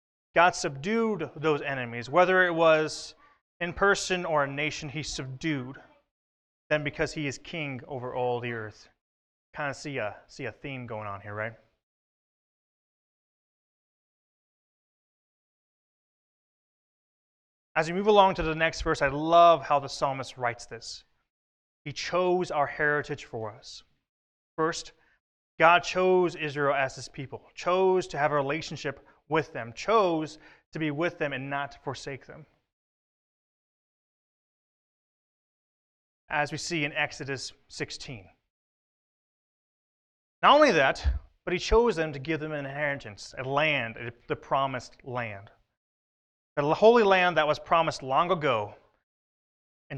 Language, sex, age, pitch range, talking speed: English, male, 30-49, 130-165 Hz, 135 wpm